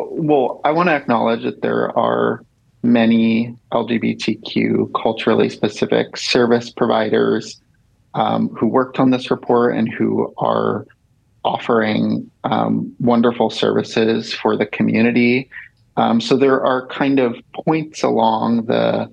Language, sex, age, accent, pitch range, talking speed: English, male, 30-49, American, 115-130 Hz, 120 wpm